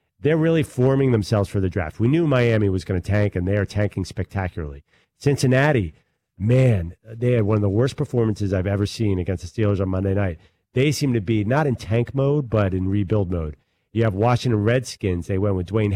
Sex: male